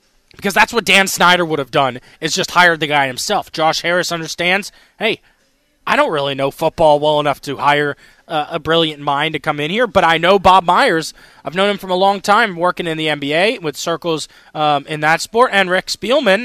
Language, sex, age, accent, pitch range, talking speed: English, male, 20-39, American, 155-205 Hz, 220 wpm